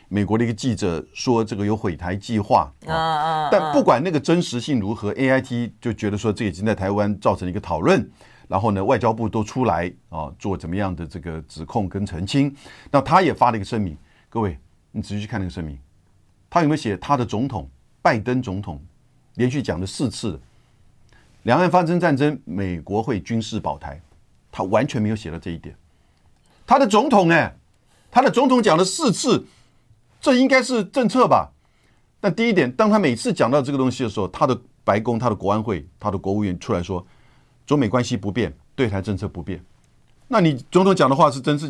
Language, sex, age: Chinese, male, 50-69